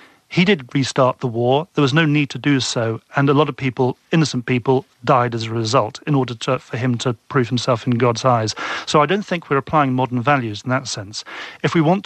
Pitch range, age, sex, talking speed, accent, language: 125-145 Hz, 40-59, male, 240 wpm, British, English